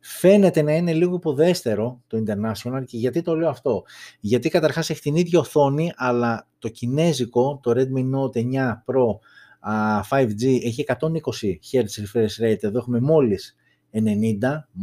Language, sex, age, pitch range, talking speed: Greek, male, 30-49, 110-145 Hz, 140 wpm